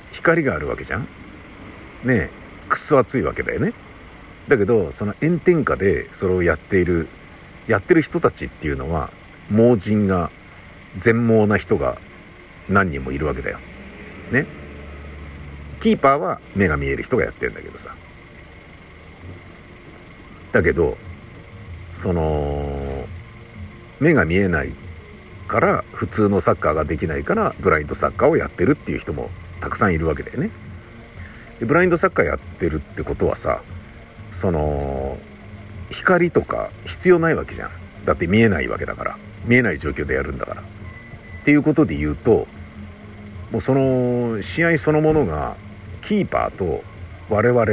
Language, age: Japanese, 50-69